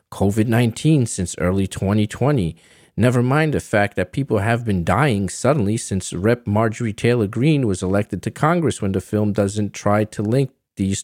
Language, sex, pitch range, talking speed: English, male, 95-110 Hz, 170 wpm